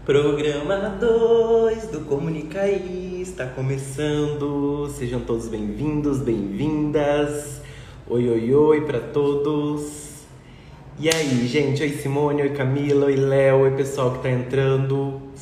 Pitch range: 125-150 Hz